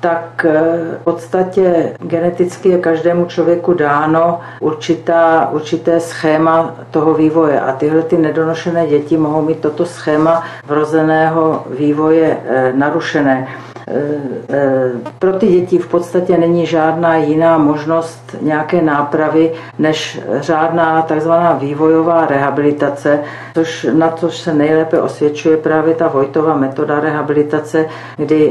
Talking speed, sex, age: 105 wpm, female, 60-79